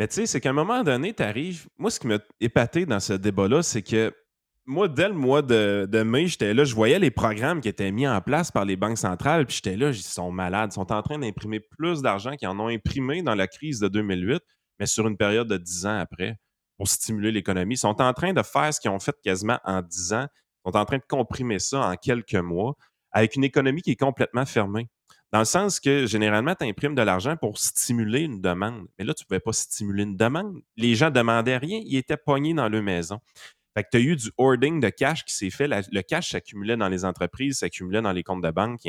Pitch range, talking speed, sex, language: 100-140 Hz, 250 wpm, male, French